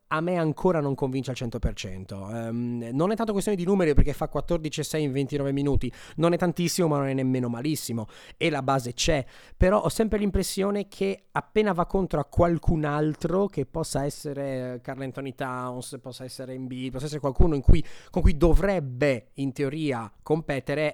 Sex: male